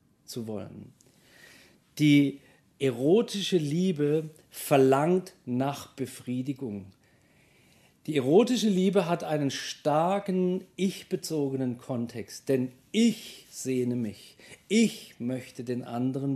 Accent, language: German, German